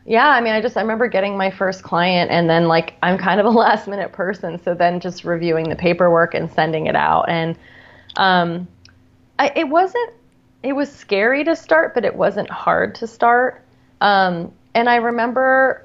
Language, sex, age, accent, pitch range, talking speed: English, female, 30-49, American, 165-200 Hz, 195 wpm